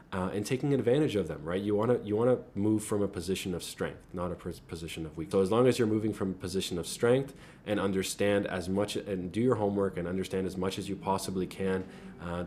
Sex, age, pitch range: male, 20-39, 90-105 Hz